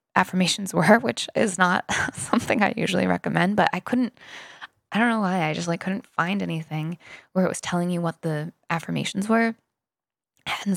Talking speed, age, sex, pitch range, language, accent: 180 wpm, 10-29, female, 170-200 Hz, English, American